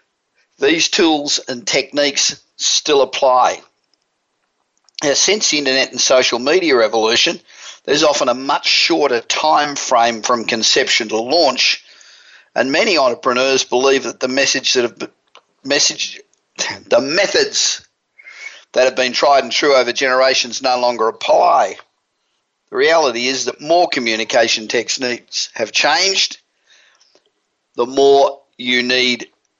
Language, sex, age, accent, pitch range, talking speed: English, male, 50-69, Australian, 120-155 Hz, 125 wpm